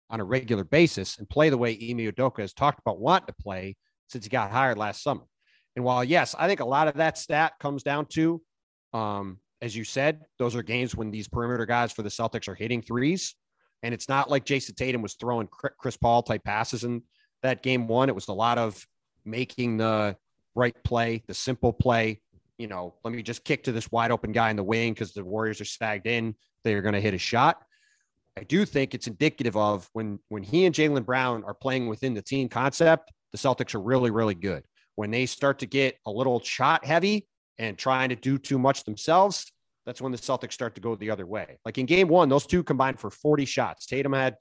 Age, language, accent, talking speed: 30-49, English, American, 230 wpm